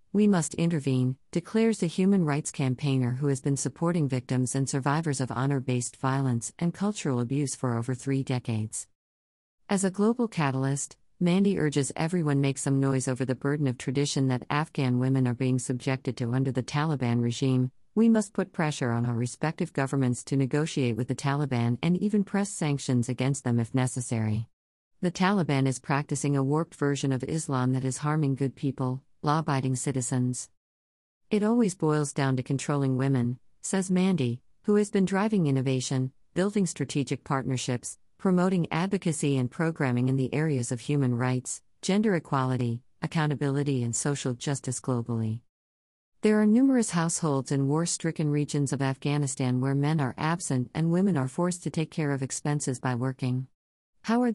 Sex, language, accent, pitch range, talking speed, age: female, English, American, 130-160 Hz, 165 wpm, 50-69